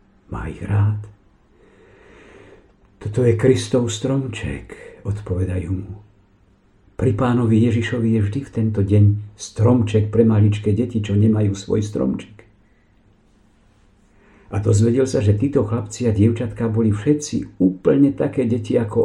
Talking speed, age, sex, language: 125 wpm, 60-79, male, Slovak